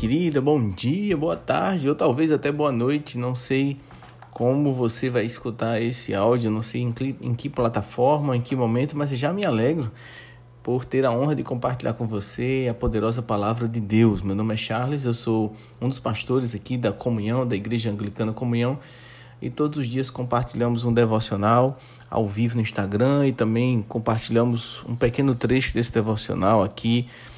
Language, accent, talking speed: Portuguese, Brazilian, 170 wpm